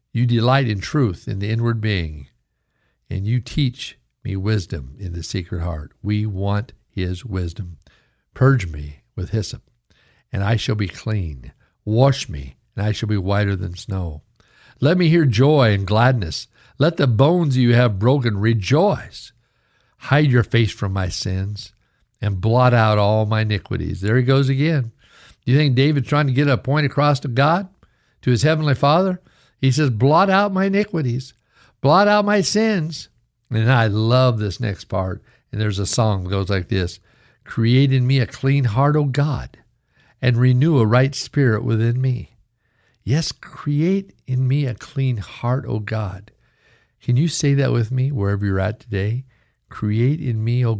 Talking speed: 170 wpm